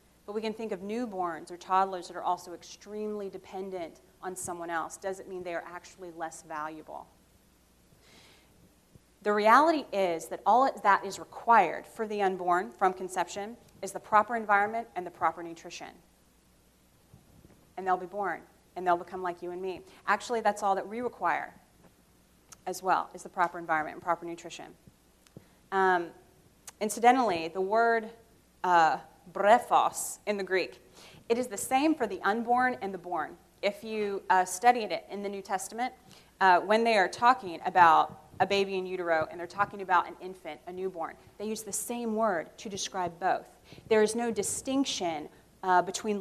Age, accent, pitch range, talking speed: 30-49, American, 175-215 Hz, 170 wpm